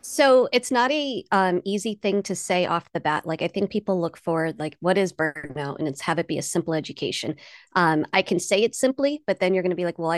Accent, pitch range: American, 170-205 Hz